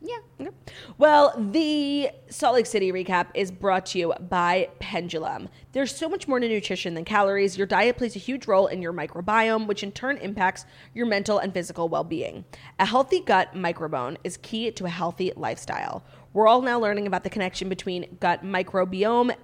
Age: 20-39